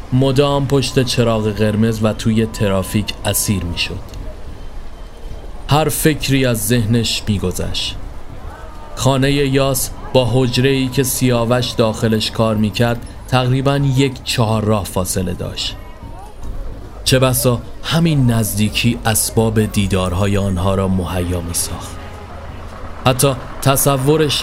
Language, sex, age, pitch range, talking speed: Persian, male, 30-49, 95-130 Hz, 110 wpm